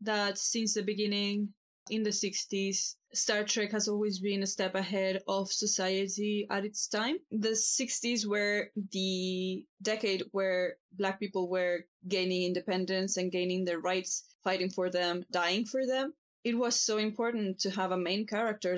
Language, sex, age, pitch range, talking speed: English, female, 20-39, 185-220 Hz, 160 wpm